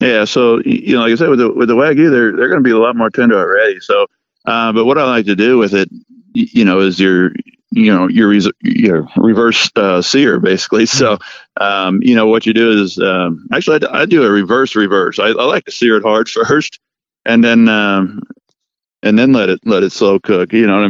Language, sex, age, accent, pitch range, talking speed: English, male, 50-69, American, 95-120 Hz, 240 wpm